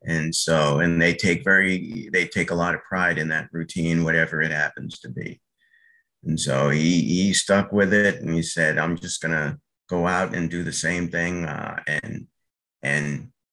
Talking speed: 195 wpm